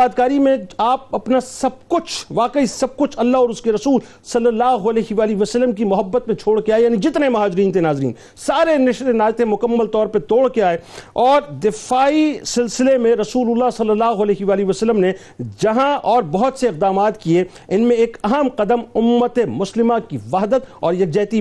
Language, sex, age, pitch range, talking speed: Urdu, male, 50-69, 210-250 Hz, 185 wpm